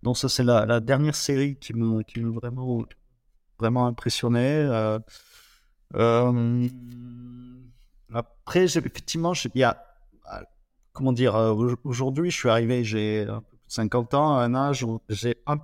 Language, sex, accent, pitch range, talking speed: French, male, French, 115-150 Hz, 140 wpm